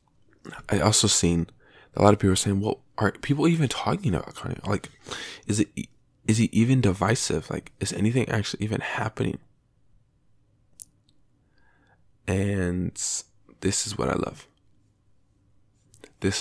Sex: male